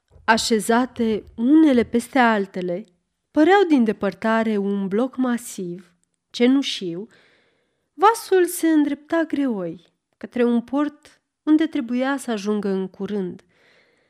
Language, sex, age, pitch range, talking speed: Romanian, female, 30-49, 200-280 Hz, 100 wpm